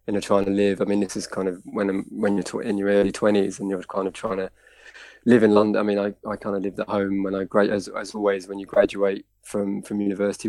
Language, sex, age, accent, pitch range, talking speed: English, male, 20-39, British, 95-100 Hz, 270 wpm